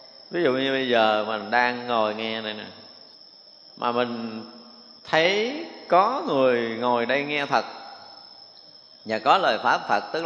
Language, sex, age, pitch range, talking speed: Vietnamese, male, 20-39, 115-150 Hz, 150 wpm